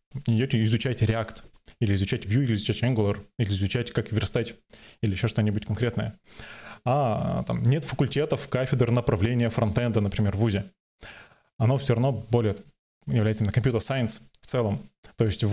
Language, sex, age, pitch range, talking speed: Russian, male, 20-39, 110-135 Hz, 145 wpm